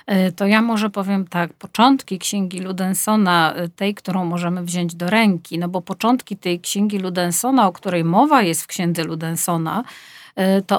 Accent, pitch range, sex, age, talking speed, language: native, 170-205 Hz, female, 50-69, 155 wpm, Polish